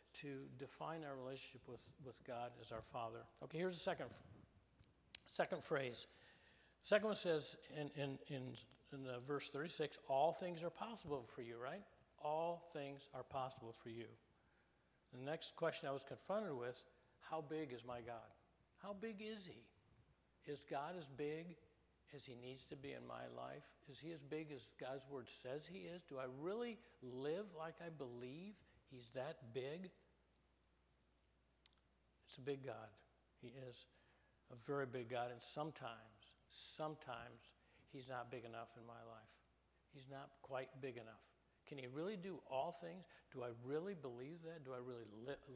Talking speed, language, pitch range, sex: 165 wpm, English, 120-160 Hz, male